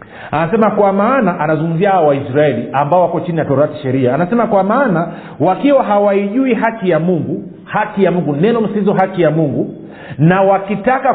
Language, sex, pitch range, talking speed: Swahili, male, 165-210 Hz, 155 wpm